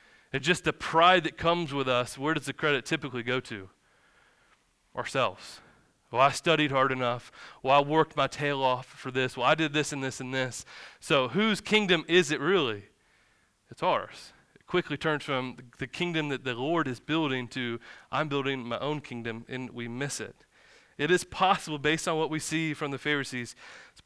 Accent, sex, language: American, male, English